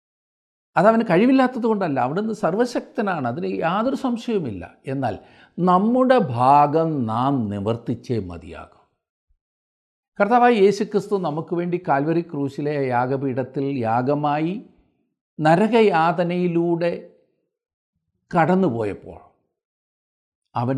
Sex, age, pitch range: male, 50-69, 115-185 Hz